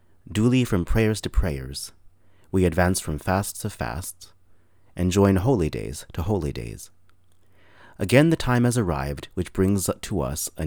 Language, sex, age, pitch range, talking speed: English, male, 30-49, 80-100 Hz, 155 wpm